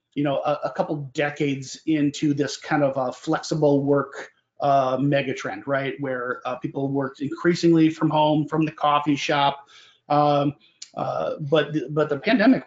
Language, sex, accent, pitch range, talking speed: English, male, American, 140-155 Hz, 160 wpm